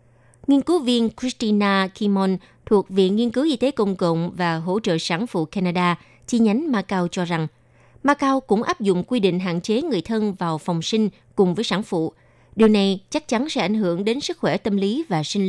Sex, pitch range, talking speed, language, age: female, 175-235 Hz, 215 wpm, Vietnamese, 20-39